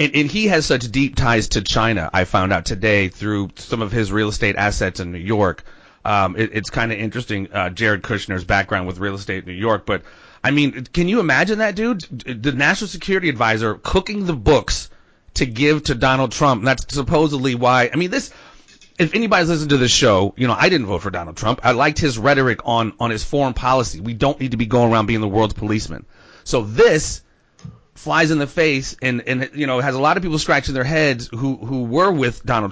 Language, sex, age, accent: English, male, 30-49, American